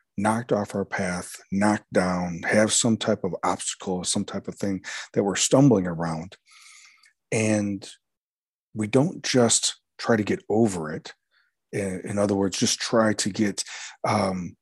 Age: 40-59